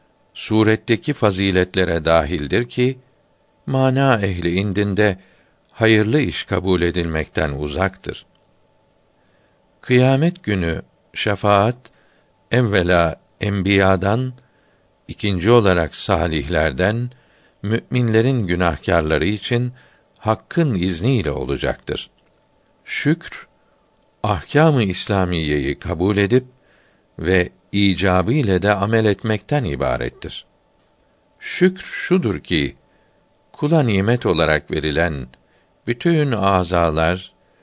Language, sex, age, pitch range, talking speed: Turkish, male, 60-79, 90-120 Hz, 75 wpm